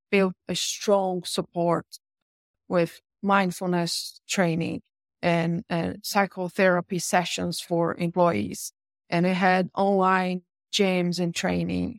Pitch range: 175-200 Hz